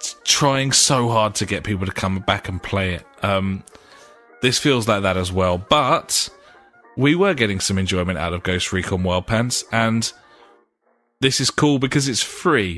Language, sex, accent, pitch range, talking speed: English, male, British, 100-135 Hz, 180 wpm